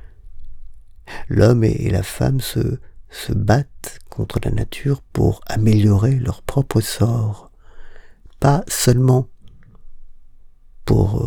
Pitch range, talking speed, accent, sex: 100-120 Hz, 95 wpm, French, male